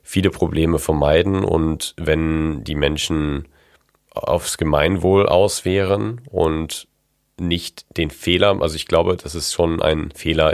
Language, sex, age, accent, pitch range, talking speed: German, male, 40-59, German, 80-90 Hz, 125 wpm